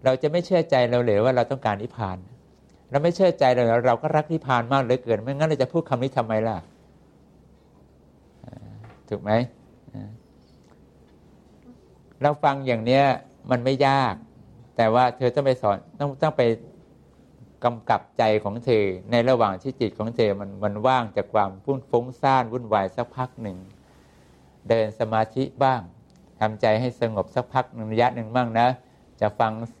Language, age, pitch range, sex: English, 60-79, 110-135 Hz, male